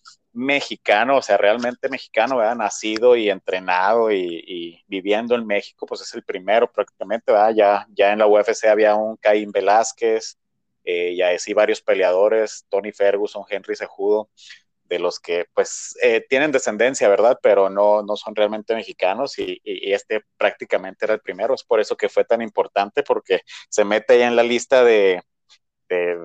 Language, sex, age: English, male, 30-49